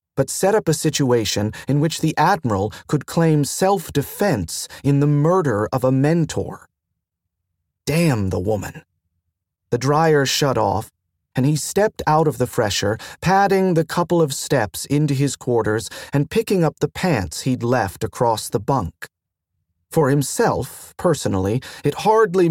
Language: English